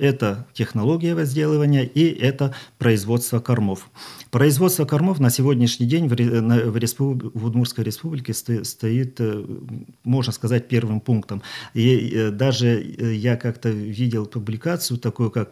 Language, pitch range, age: Russian, 110-130 Hz, 40-59